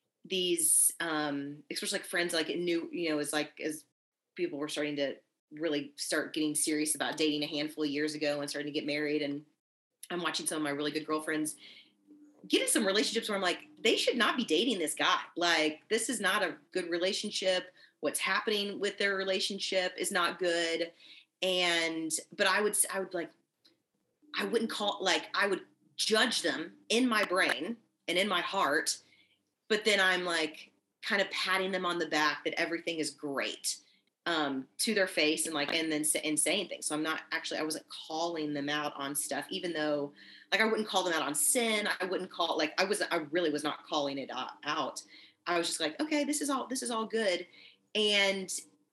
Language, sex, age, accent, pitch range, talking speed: English, female, 30-49, American, 150-200 Hz, 205 wpm